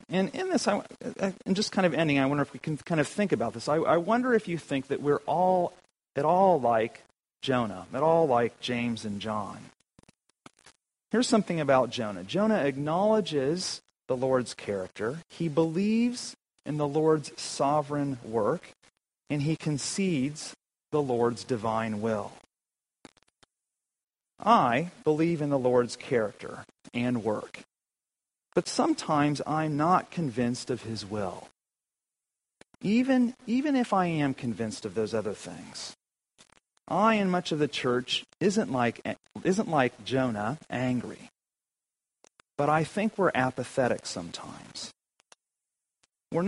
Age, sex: 40-59, male